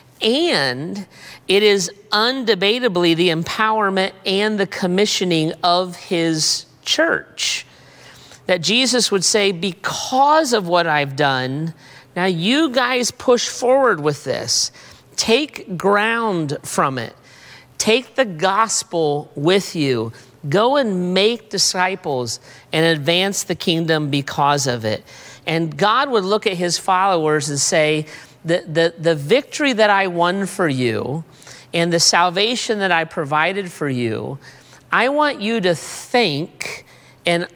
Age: 40-59